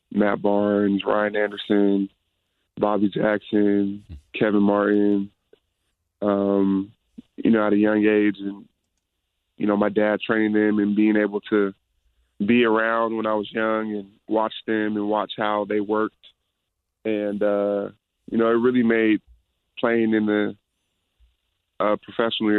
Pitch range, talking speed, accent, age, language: 100-105 Hz, 135 wpm, American, 20-39, English